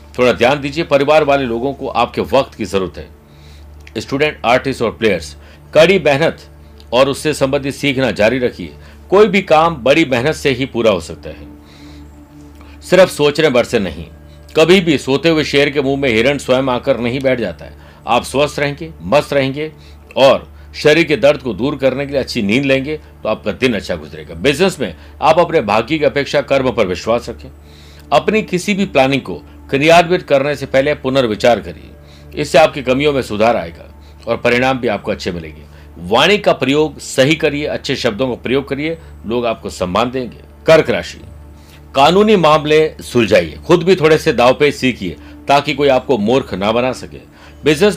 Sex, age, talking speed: male, 60-79, 180 wpm